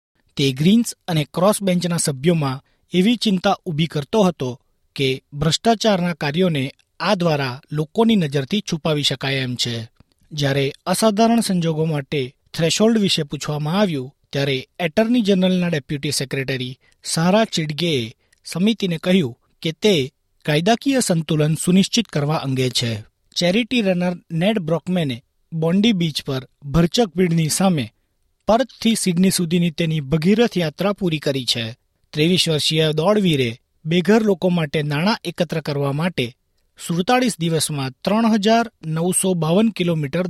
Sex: male